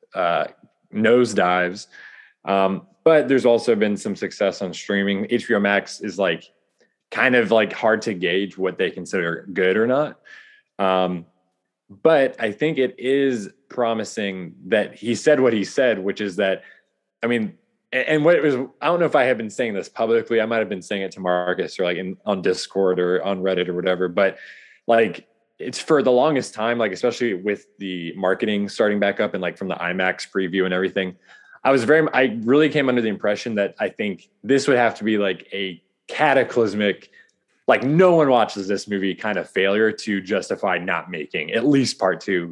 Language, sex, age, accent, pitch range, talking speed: English, male, 20-39, American, 95-125 Hz, 190 wpm